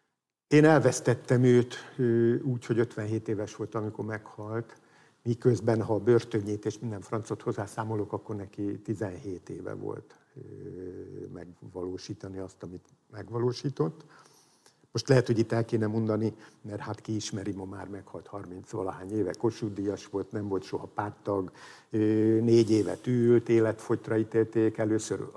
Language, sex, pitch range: Hungarian, male, 100-120 Hz